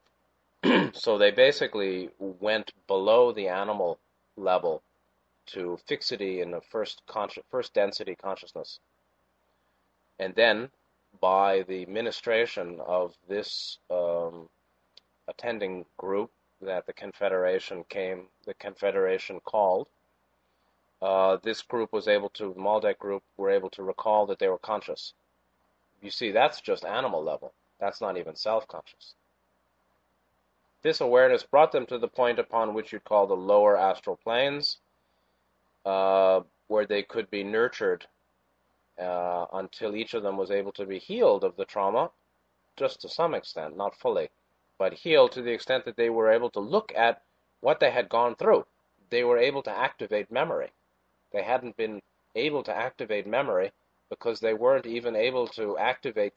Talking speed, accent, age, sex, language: 145 wpm, American, 30-49, male, English